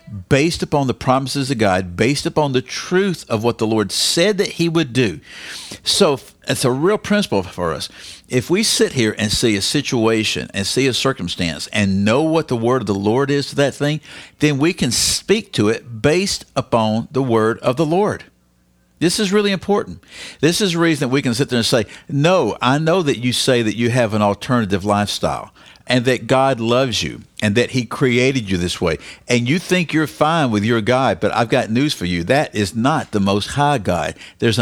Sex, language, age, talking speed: male, English, 50-69, 215 wpm